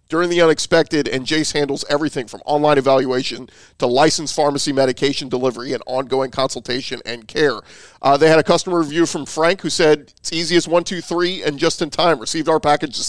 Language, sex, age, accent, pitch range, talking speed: English, male, 40-59, American, 135-170 Hz, 200 wpm